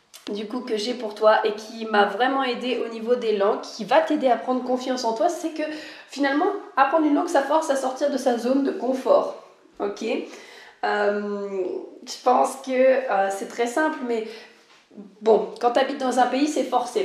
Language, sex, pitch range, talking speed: French, female, 210-265 Hz, 200 wpm